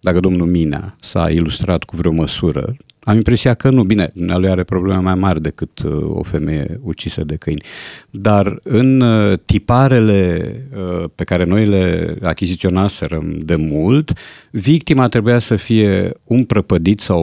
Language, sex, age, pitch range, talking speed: Romanian, male, 50-69, 95-125 Hz, 145 wpm